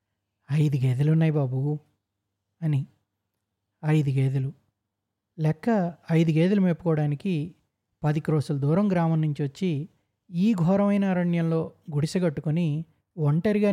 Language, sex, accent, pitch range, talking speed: Telugu, male, native, 110-180 Hz, 95 wpm